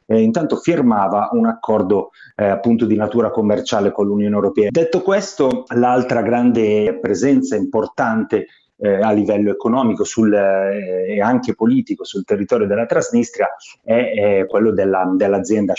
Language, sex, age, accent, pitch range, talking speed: Italian, male, 30-49, native, 105-135 Hz, 135 wpm